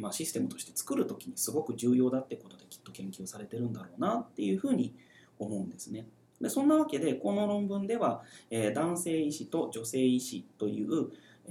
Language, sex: Japanese, male